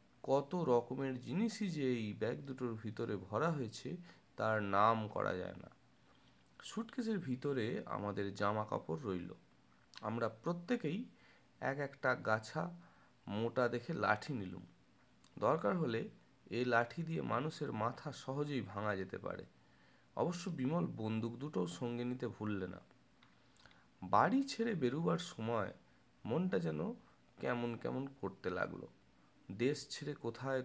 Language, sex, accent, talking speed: Bengali, male, native, 105 wpm